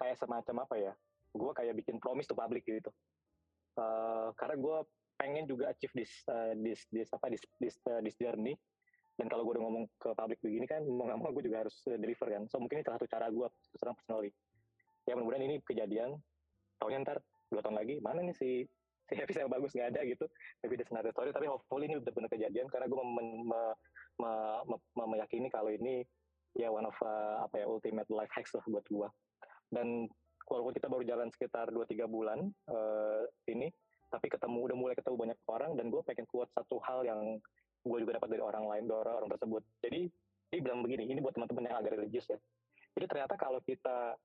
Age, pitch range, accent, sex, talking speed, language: 20-39, 110-135 Hz, native, male, 185 wpm, Indonesian